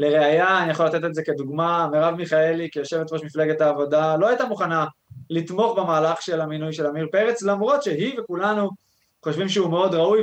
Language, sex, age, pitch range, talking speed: Hebrew, male, 20-39, 150-180 Hz, 170 wpm